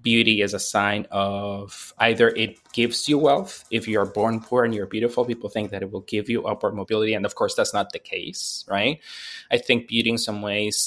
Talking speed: 220 wpm